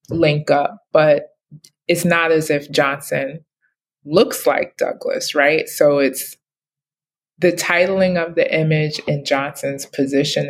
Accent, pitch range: American, 145-170 Hz